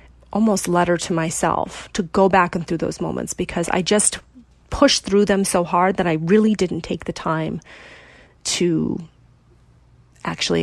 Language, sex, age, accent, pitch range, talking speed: English, female, 30-49, American, 165-200 Hz, 160 wpm